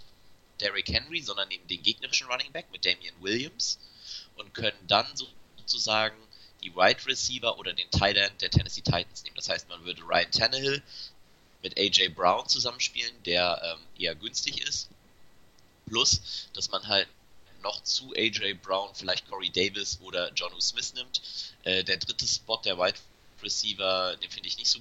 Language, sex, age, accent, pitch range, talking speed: German, male, 30-49, German, 90-110 Hz, 165 wpm